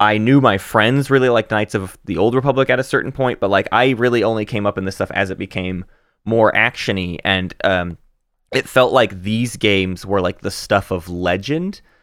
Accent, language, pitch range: American, English, 95-130 Hz